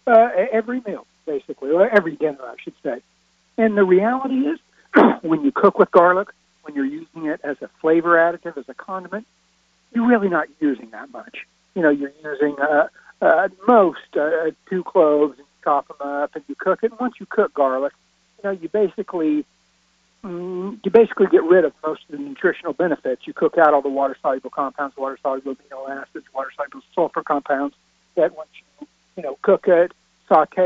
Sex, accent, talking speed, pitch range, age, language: male, American, 190 wpm, 150-215 Hz, 60-79, English